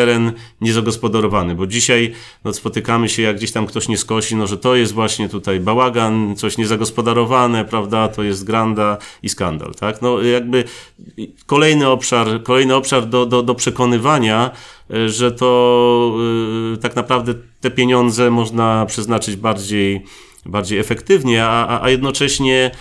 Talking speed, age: 140 wpm, 30-49